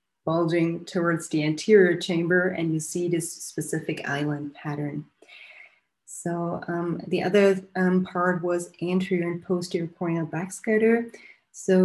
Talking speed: 125 wpm